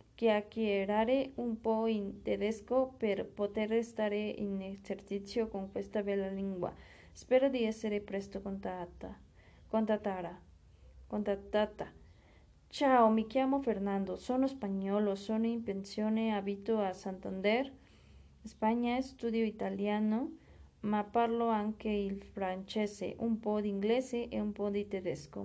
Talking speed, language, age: 115 wpm, Spanish, 20-39